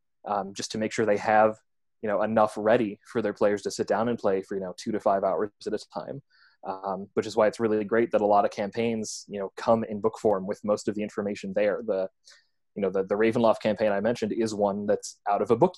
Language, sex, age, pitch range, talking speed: English, male, 20-39, 100-115 Hz, 265 wpm